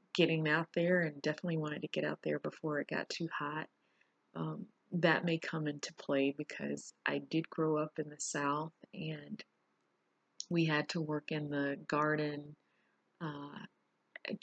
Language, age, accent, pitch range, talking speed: English, 30-49, American, 145-190 Hz, 160 wpm